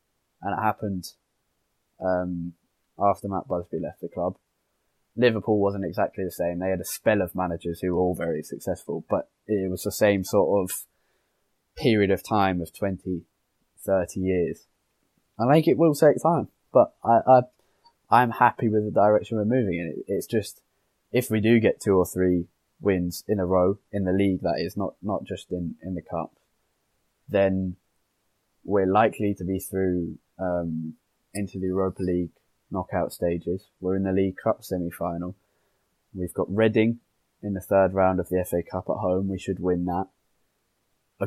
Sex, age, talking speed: male, 20-39, 175 wpm